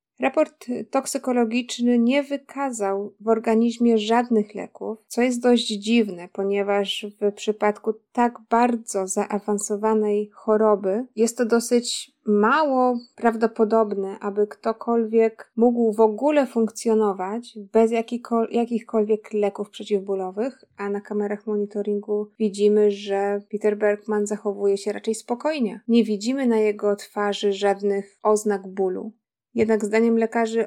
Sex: female